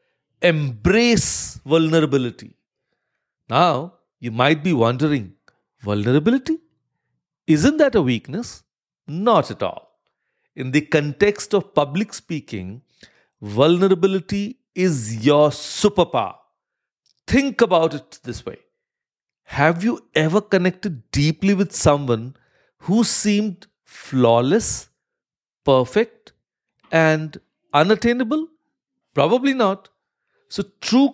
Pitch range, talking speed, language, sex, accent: 135-220 Hz, 90 wpm, English, male, Indian